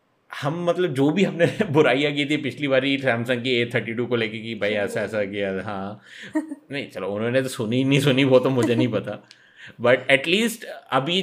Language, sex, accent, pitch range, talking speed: Hindi, male, native, 115-160 Hz, 200 wpm